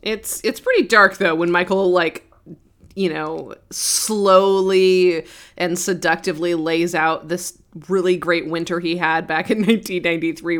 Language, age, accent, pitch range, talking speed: English, 20-39, American, 160-190 Hz, 135 wpm